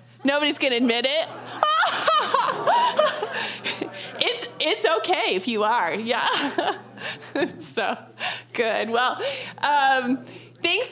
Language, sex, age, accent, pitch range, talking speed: English, female, 30-49, American, 245-315 Hz, 90 wpm